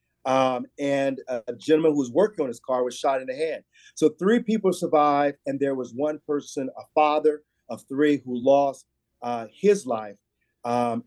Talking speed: 185 wpm